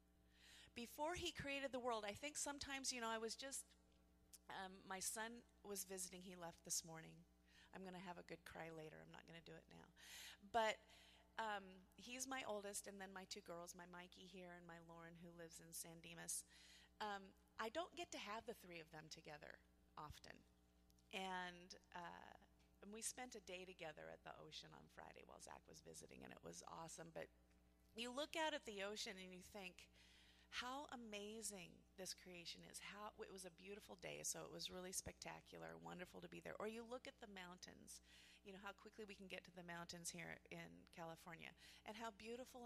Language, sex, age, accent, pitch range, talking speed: English, female, 30-49, American, 150-215 Hz, 200 wpm